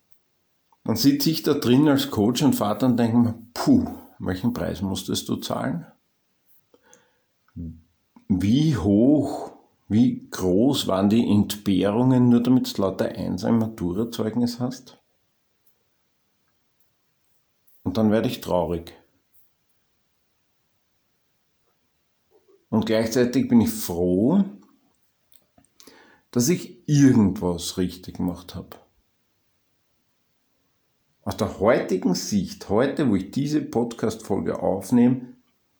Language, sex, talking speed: German, male, 100 wpm